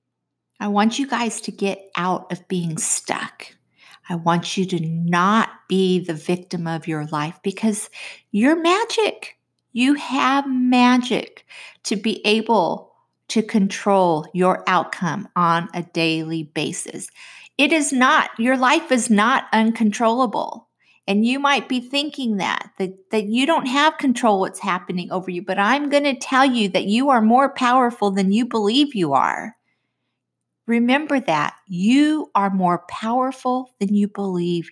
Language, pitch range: English, 170-250 Hz